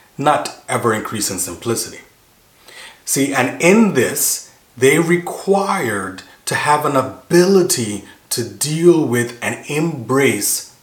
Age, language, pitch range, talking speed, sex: 30-49, English, 115-140 Hz, 110 wpm, male